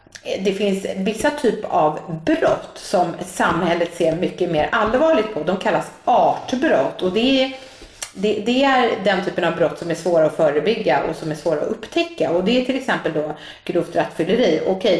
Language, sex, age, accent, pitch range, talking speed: English, female, 30-49, Swedish, 155-215 Hz, 170 wpm